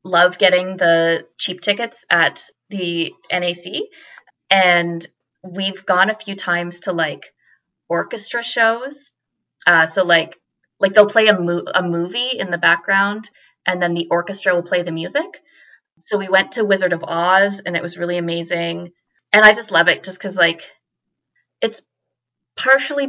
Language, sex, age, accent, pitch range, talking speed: English, female, 20-39, American, 165-200 Hz, 160 wpm